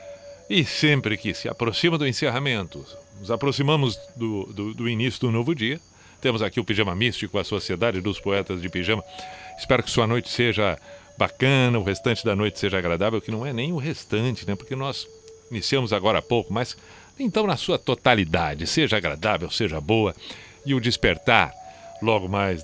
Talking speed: 175 wpm